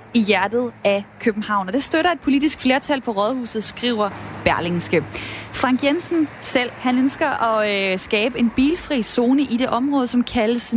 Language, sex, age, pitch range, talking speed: Danish, female, 20-39, 210-270 Hz, 160 wpm